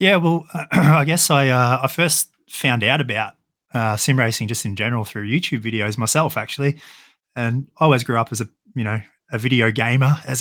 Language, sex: English, male